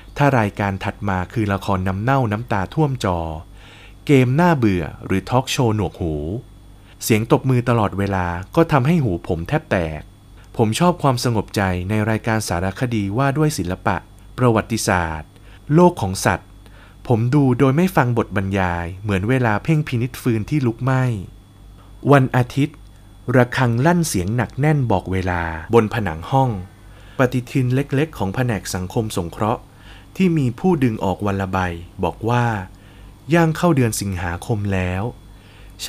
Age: 20-39